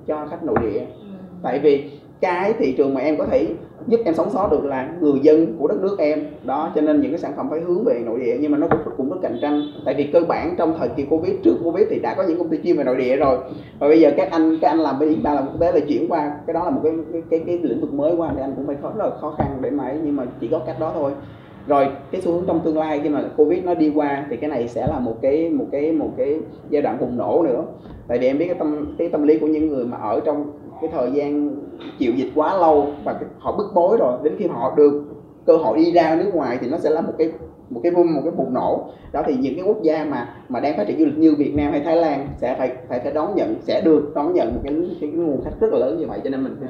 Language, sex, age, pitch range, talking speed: Vietnamese, male, 20-39, 150-180 Hz, 305 wpm